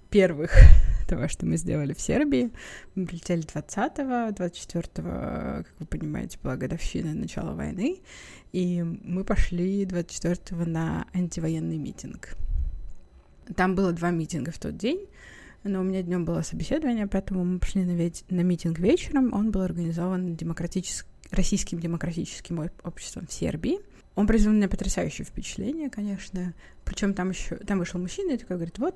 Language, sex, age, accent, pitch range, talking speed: Russian, female, 20-39, native, 170-200 Hz, 145 wpm